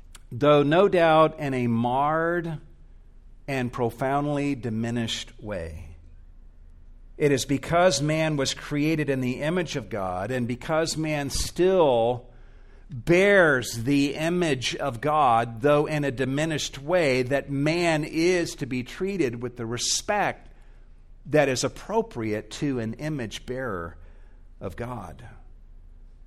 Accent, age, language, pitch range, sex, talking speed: American, 50-69, English, 120-155 Hz, male, 120 wpm